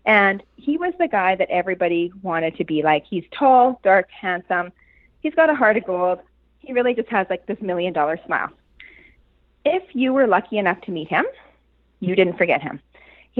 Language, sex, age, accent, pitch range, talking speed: English, female, 30-49, American, 180-260 Hz, 195 wpm